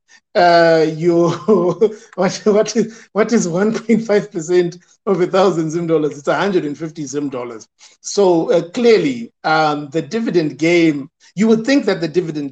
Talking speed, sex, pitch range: 145 wpm, male, 145-185 Hz